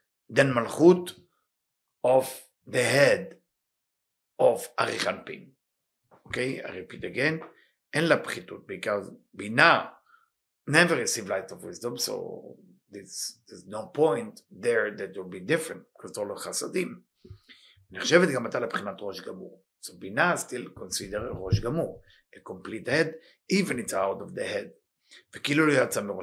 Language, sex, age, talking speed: English, male, 50-69, 105 wpm